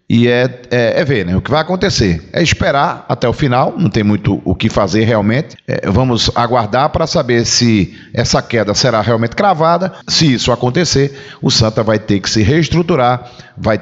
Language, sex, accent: Portuguese, male, Brazilian